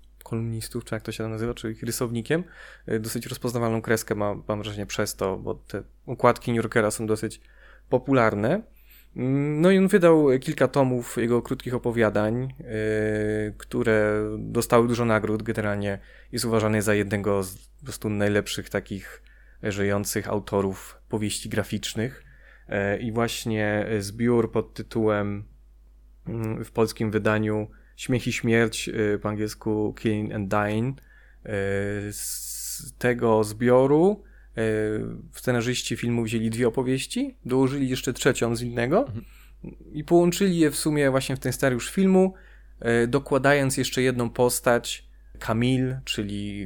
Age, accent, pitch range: 20-39, native, 105-130 Hz